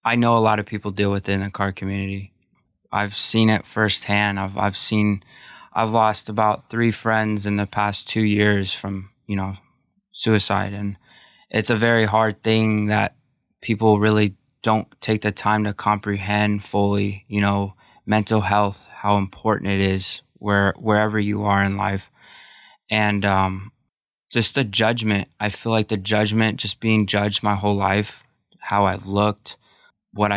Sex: male